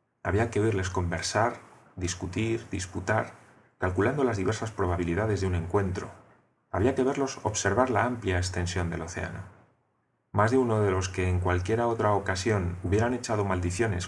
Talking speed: 150 wpm